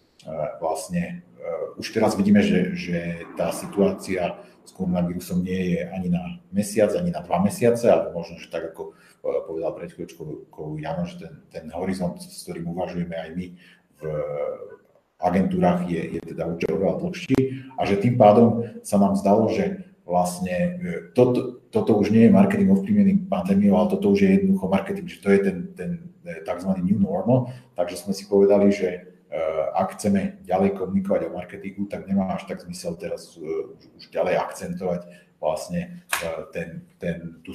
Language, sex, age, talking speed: Slovak, male, 40-59, 175 wpm